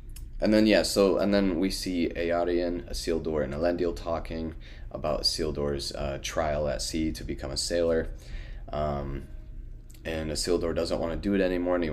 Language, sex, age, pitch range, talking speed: English, male, 30-49, 75-85 Hz, 170 wpm